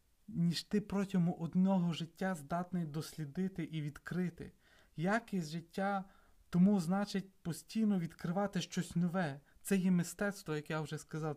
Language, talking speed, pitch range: Ukrainian, 125 wpm, 160-195 Hz